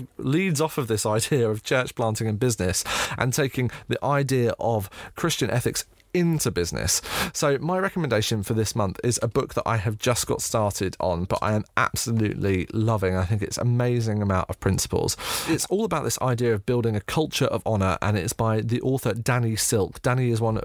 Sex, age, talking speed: male, 30-49, 200 wpm